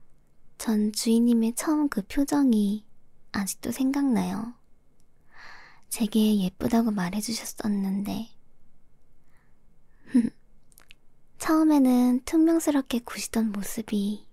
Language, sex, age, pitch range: Korean, male, 20-39, 210-265 Hz